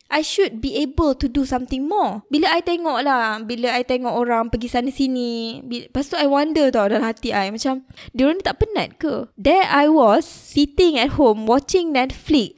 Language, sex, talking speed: Malay, female, 190 wpm